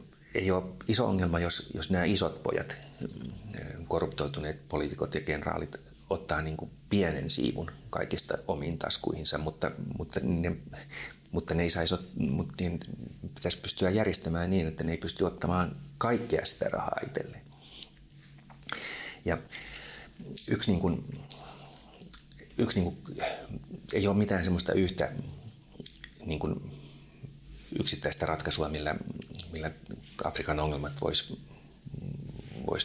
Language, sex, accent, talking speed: Finnish, male, native, 110 wpm